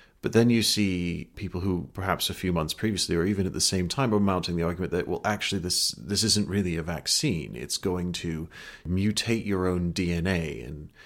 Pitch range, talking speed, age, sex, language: 90-110 Hz, 205 wpm, 30-49, male, English